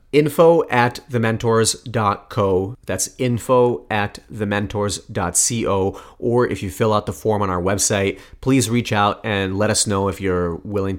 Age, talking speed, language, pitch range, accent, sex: 30-49, 160 wpm, English, 95-115 Hz, American, male